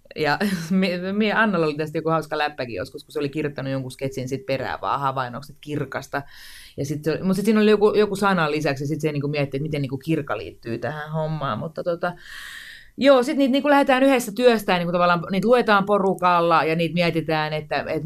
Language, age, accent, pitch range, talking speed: Finnish, 30-49, native, 150-205 Hz, 200 wpm